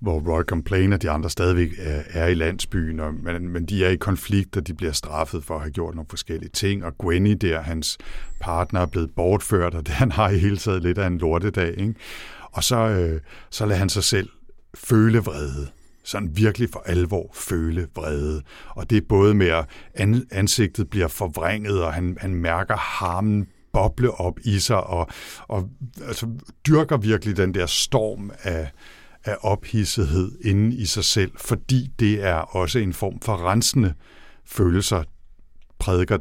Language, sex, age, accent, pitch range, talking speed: Danish, male, 60-79, native, 80-105 Hz, 175 wpm